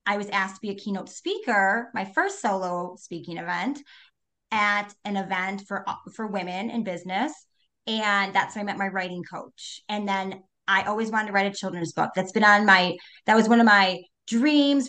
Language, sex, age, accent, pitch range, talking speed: English, female, 30-49, American, 190-235 Hz, 200 wpm